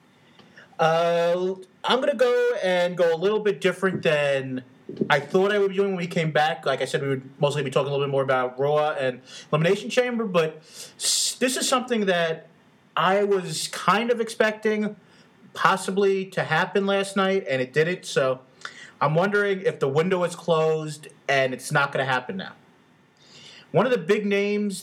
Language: English